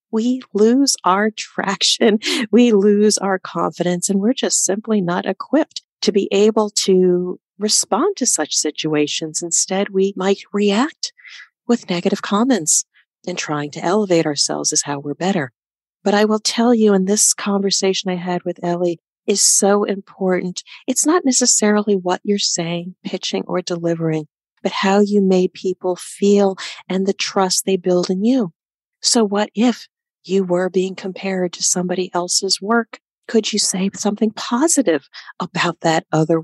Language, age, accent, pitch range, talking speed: English, 40-59, American, 170-210 Hz, 155 wpm